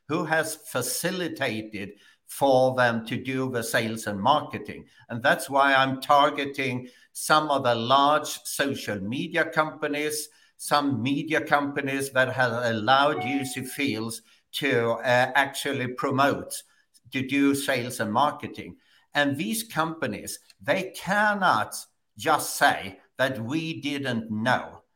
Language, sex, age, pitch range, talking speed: English, male, 60-79, 120-155 Hz, 125 wpm